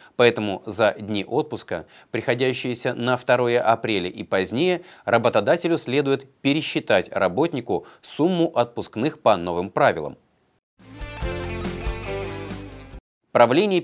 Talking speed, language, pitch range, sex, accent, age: 85 wpm, Russian, 110-155 Hz, male, native, 30-49